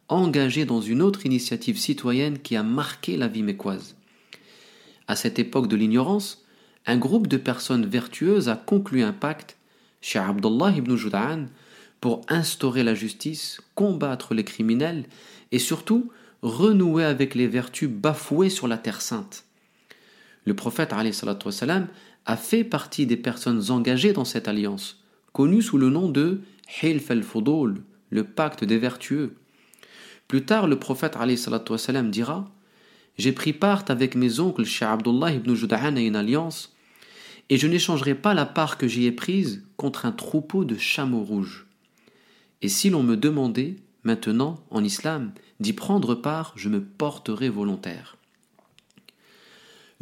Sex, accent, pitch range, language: male, French, 120-195 Hz, French